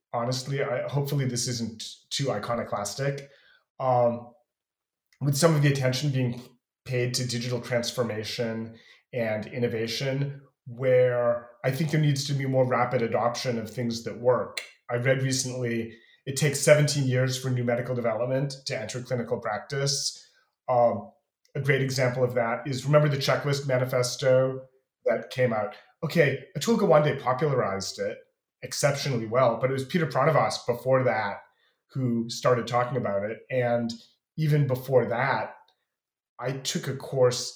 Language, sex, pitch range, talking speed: English, male, 120-135 Hz, 140 wpm